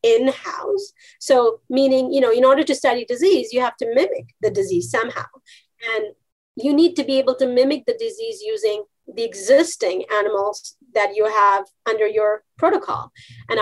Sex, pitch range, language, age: female, 240-360 Hz, English, 30-49